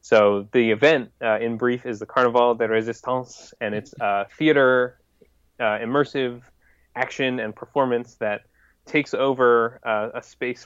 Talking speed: 150 wpm